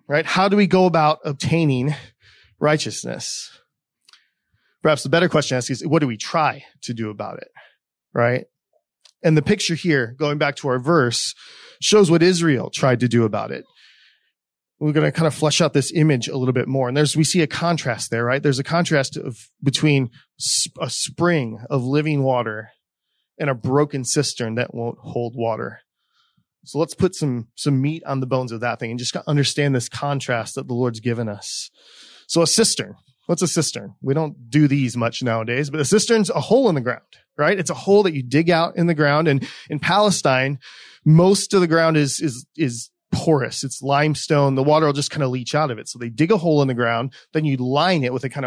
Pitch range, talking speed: 125-160 Hz, 210 wpm